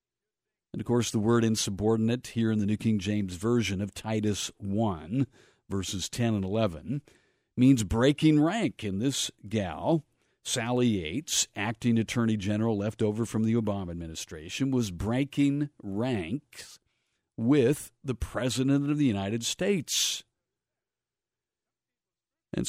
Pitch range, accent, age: 100-125 Hz, American, 50-69